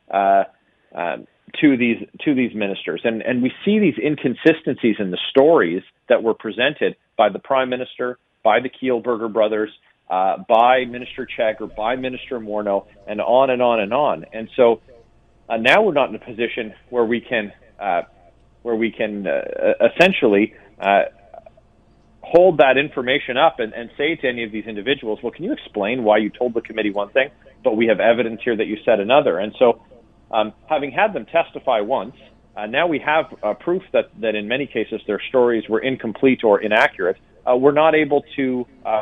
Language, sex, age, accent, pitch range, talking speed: English, male, 40-59, American, 110-135 Hz, 190 wpm